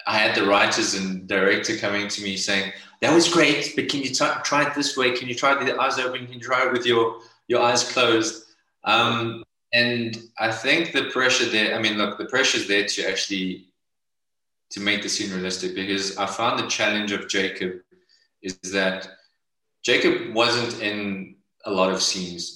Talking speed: 185 wpm